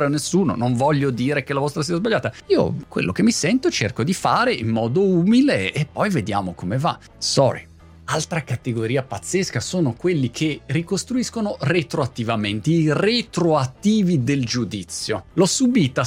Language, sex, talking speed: Italian, male, 155 wpm